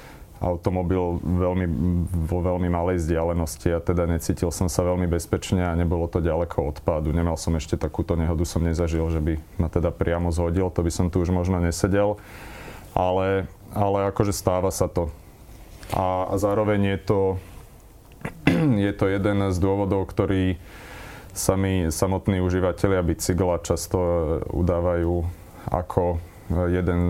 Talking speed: 145 wpm